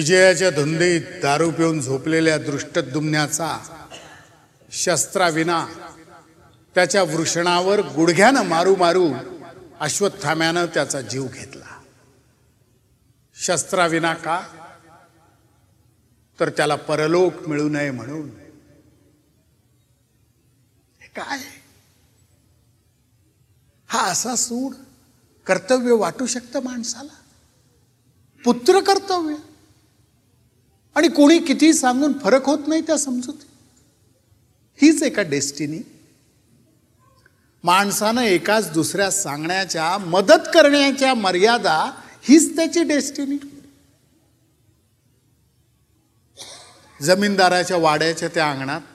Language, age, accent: Marathi, 50-69, native